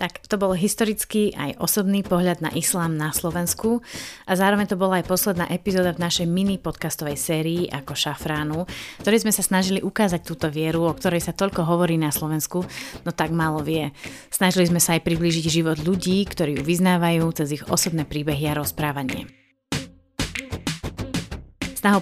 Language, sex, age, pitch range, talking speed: Slovak, female, 30-49, 150-175 Hz, 165 wpm